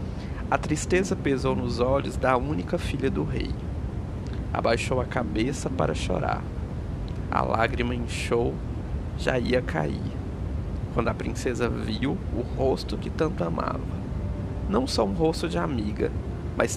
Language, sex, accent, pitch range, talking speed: Portuguese, male, Brazilian, 85-115 Hz, 130 wpm